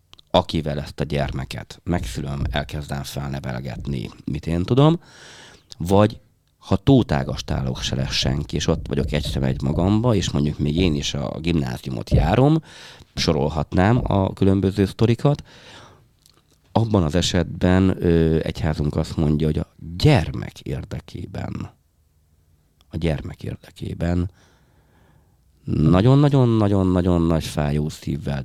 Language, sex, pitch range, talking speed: Hungarian, male, 80-105 Hz, 105 wpm